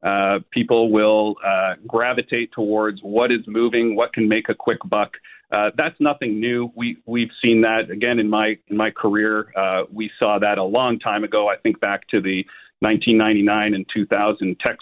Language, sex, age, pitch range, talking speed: English, male, 40-59, 105-125 Hz, 180 wpm